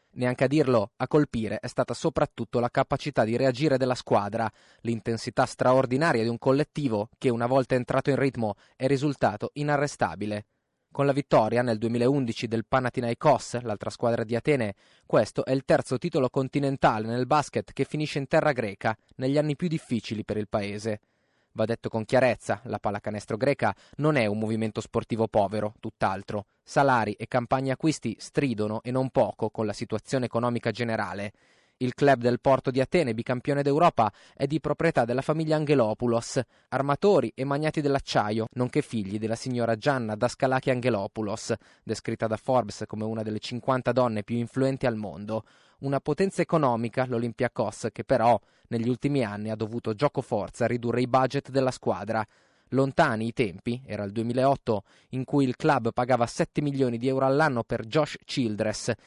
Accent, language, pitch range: native, Italian, 110-135 Hz